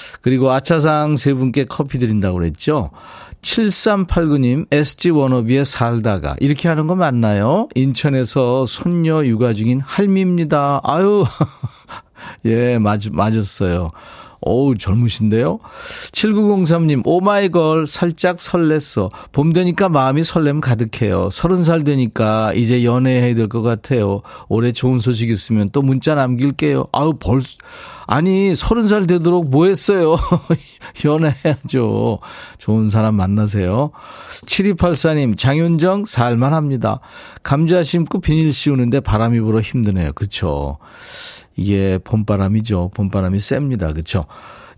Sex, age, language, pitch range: male, 40-59, Korean, 110-160 Hz